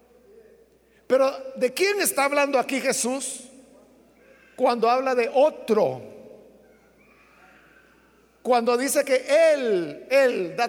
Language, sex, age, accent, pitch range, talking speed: Spanish, male, 50-69, Mexican, 240-305 Hz, 95 wpm